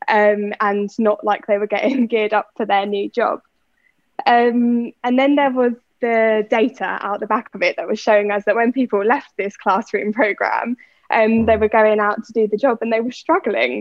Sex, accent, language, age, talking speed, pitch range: female, British, English, 10-29, 215 wpm, 210-245 Hz